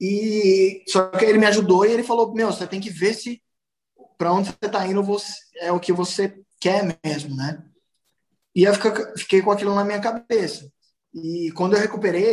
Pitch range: 170-200 Hz